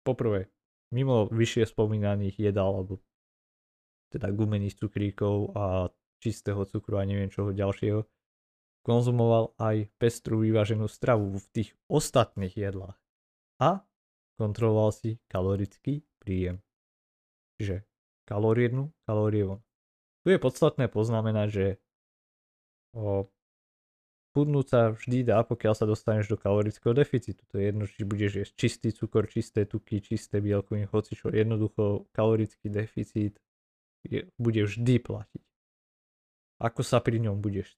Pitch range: 100-115 Hz